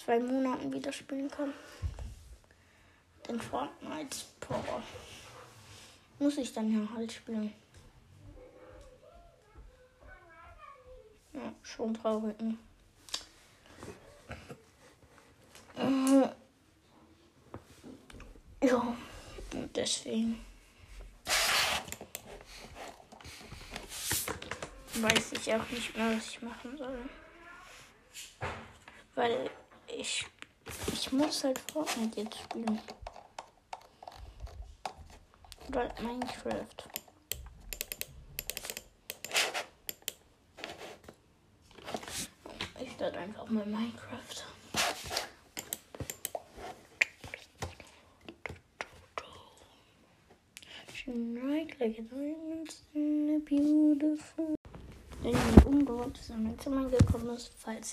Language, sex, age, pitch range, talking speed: German, female, 10-29, 225-290 Hz, 55 wpm